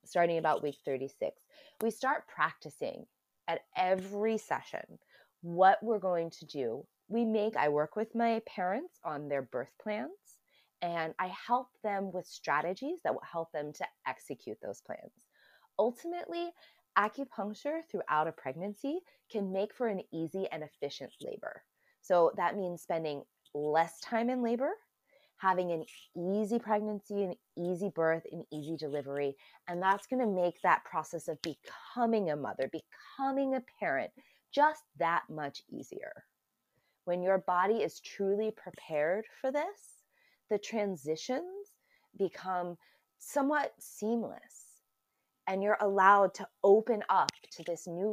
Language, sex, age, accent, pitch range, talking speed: English, female, 20-39, American, 165-230 Hz, 140 wpm